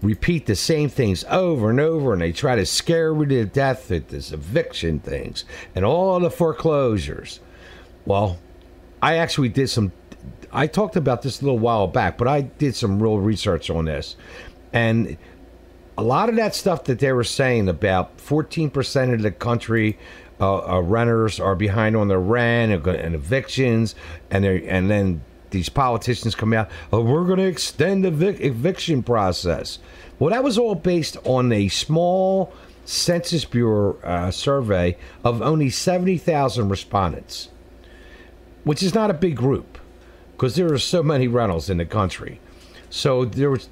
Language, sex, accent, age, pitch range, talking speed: English, male, American, 50-69, 90-145 Hz, 165 wpm